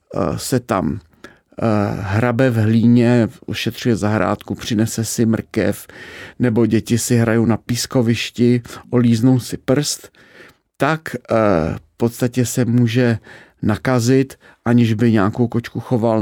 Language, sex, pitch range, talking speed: Czech, male, 110-130 Hz, 110 wpm